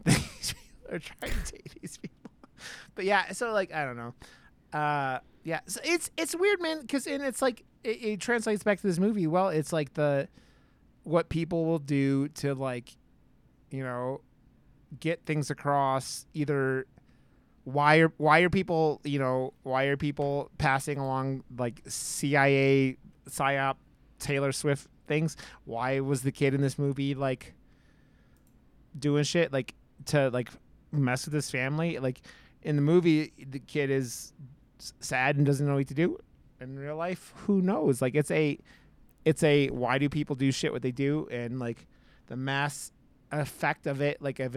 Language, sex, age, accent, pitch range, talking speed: English, male, 20-39, American, 130-155 Hz, 165 wpm